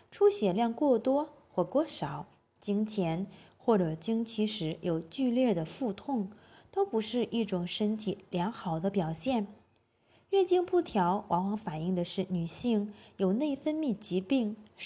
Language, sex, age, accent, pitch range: Chinese, female, 20-39, native, 175-245 Hz